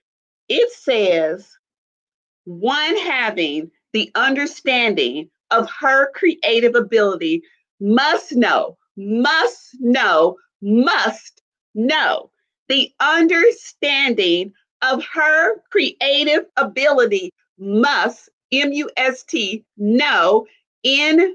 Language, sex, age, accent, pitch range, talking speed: English, female, 40-59, American, 225-335 Hz, 80 wpm